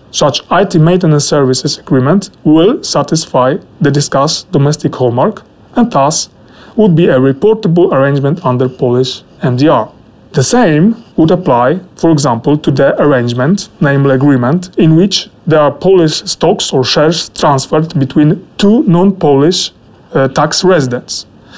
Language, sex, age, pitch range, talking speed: Polish, male, 30-49, 145-185 Hz, 130 wpm